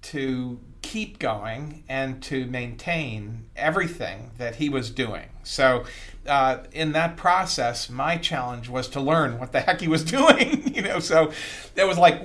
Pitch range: 115-145 Hz